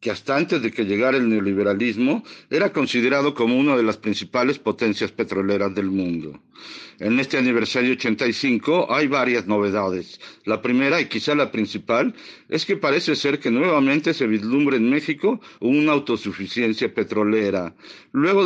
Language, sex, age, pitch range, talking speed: Spanish, male, 50-69, 110-140 Hz, 150 wpm